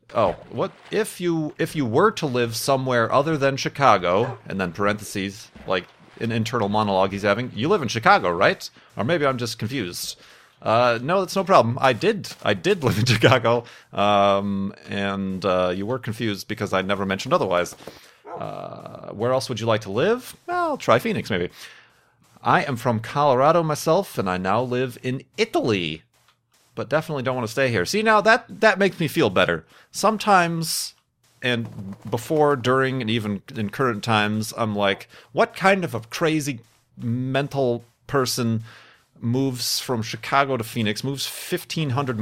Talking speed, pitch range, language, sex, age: 170 wpm, 110-145 Hz, English, male, 30-49